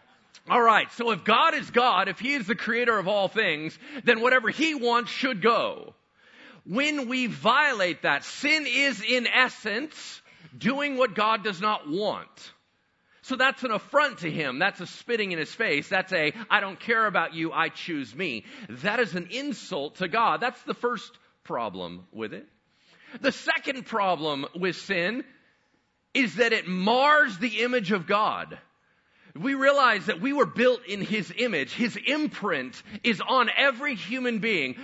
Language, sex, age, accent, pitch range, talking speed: English, male, 40-59, American, 180-250 Hz, 170 wpm